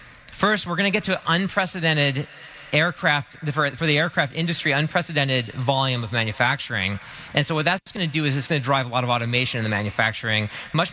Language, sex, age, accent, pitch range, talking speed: English, male, 30-49, American, 120-155 Hz, 210 wpm